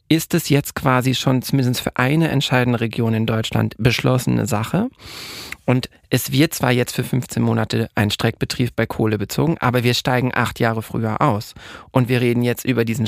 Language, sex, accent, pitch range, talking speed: German, male, German, 110-135 Hz, 185 wpm